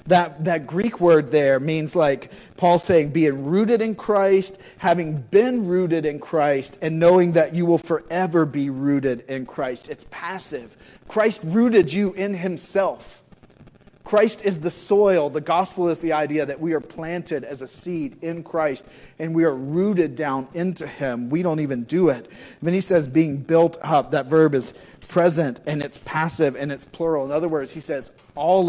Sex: male